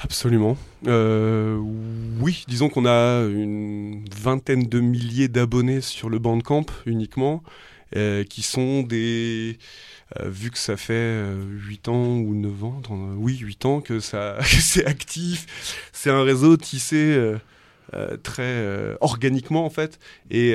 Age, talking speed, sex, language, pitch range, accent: 20-39, 150 wpm, male, French, 105-130 Hz, French